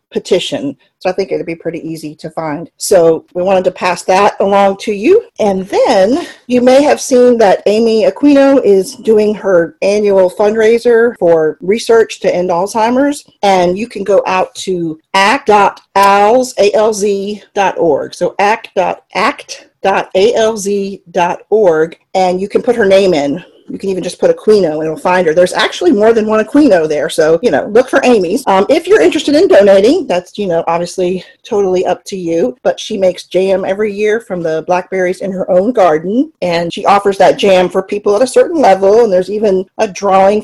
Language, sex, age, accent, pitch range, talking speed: English, female, 40-59, American, 180-230 Hz, 180 wpm